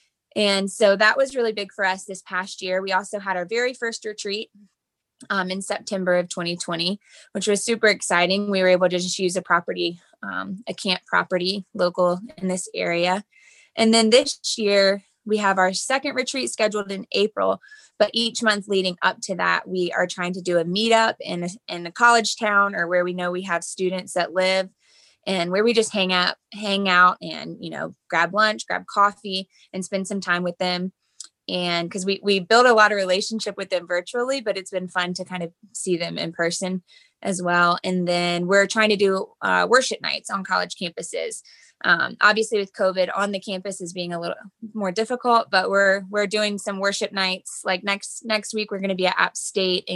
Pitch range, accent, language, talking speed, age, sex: 180-210 Hz, American, English, 205 wpm, 20-39, female